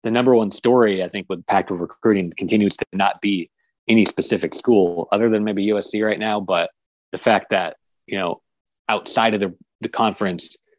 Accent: American